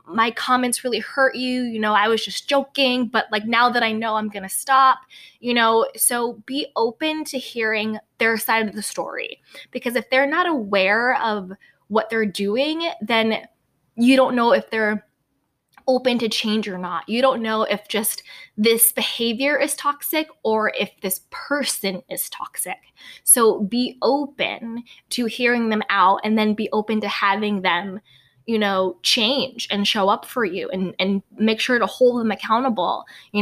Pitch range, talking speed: 205-250 Hz, 180 wpm